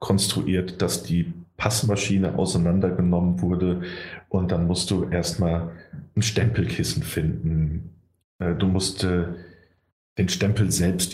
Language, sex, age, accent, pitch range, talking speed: German, male, 40-59, German, 90-105 Hz, 100 wpm